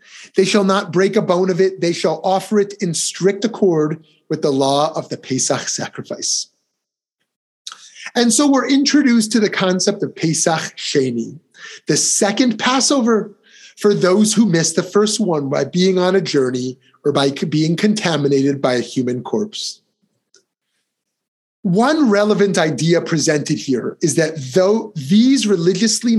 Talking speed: 150 wpm